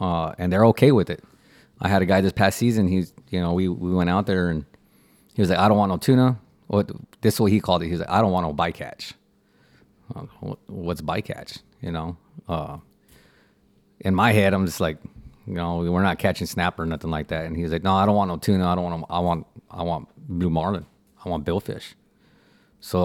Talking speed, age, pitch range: 235 wpm, 30-49, 85-100 Hz